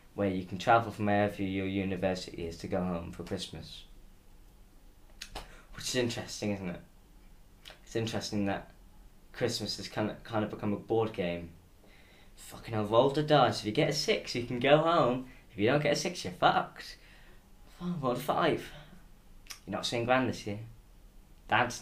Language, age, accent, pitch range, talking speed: English, 10-29, British, 95-120 Hz, 170 wpm